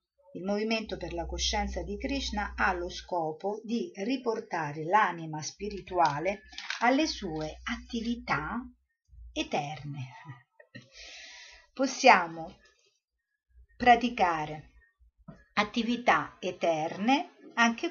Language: Italian